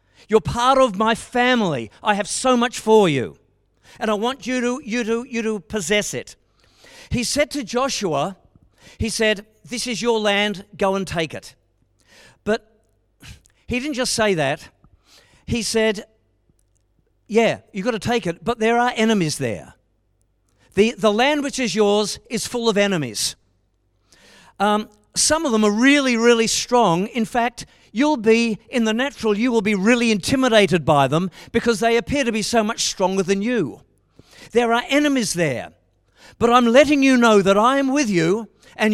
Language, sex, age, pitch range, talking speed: English, male, 50-69, 175-245 Hz, 170 wpm